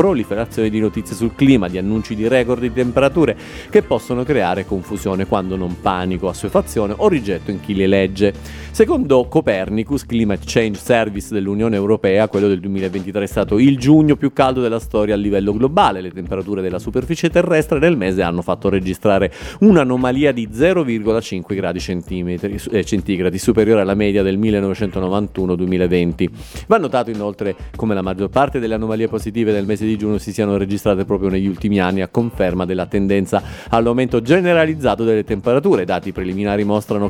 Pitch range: 95-120 Hz